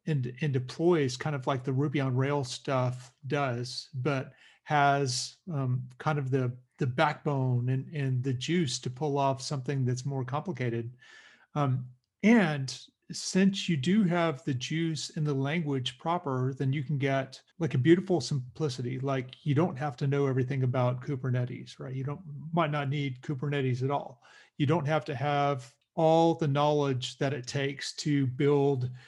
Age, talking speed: 40-59, 170 wpm